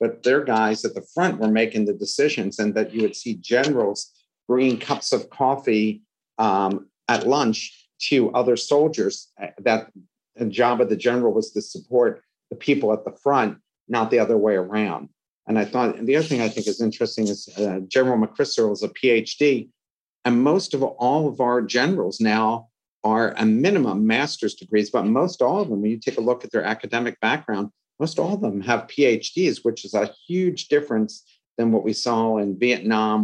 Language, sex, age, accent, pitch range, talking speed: English, male, 50-69, American, 105-125 Hz, 190 wpm